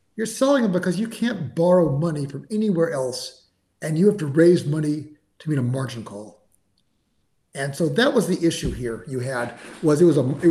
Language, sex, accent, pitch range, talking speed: English, male, American, 140-180 Hz, 205 wpm